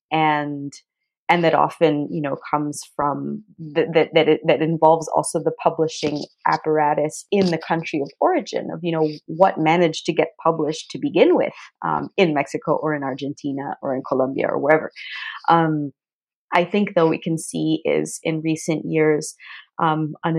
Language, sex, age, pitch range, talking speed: English, female, 30-49, 150-170 Hz, 170 wpm